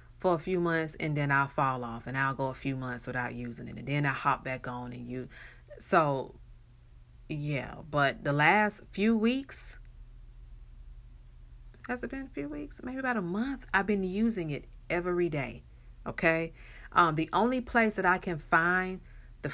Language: English